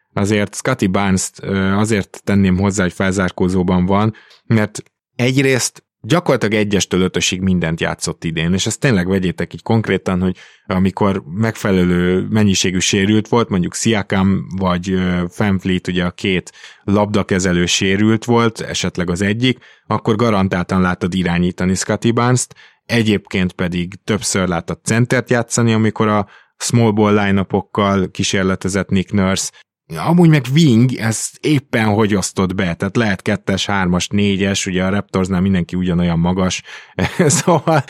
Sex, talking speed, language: male, 130 wpm, Hungarian